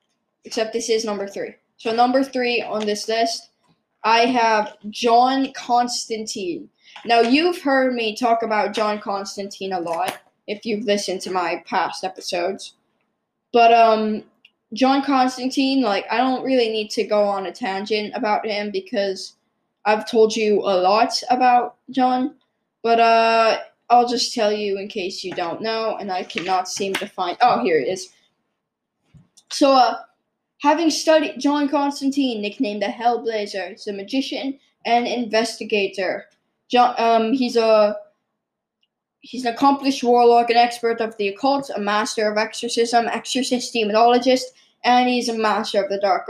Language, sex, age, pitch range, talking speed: English, female, 10-29, 210-250 Hz, 150 wpm